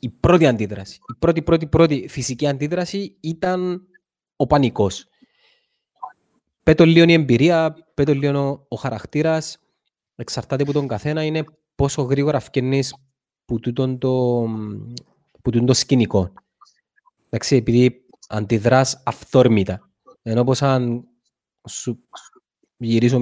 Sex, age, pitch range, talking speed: male, 20-39, 120-145 Hz, 105 wpm